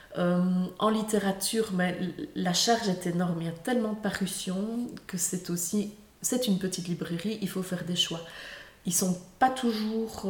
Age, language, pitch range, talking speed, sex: 20-39, French, 175-200 Hz, 175 wpm, female